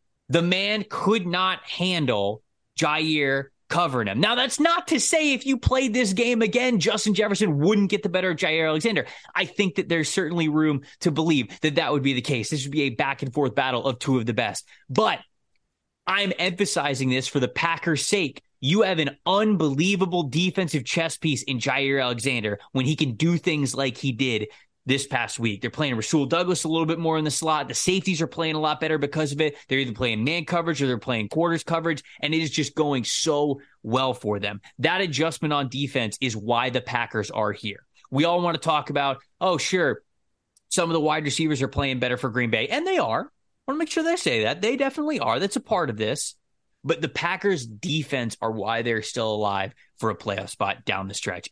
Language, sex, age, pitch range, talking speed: English, male, 20-39, 130-175 Hz, 215 wpm